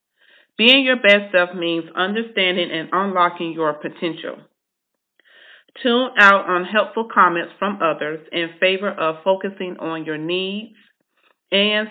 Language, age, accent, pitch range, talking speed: English, 40-59, American, 170-205 Hz, 125 wpm